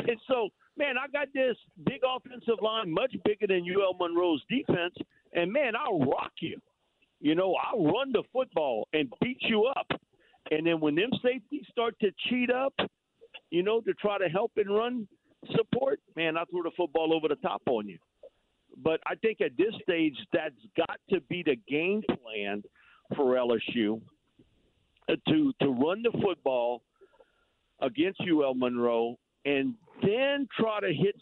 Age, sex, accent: 50-69, male, American